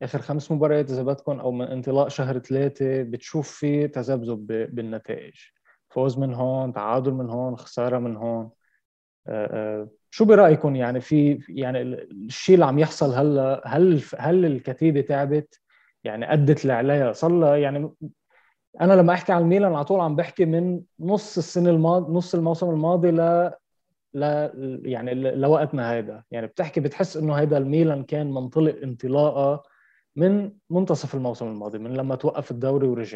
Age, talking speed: 20-39, 150 wpm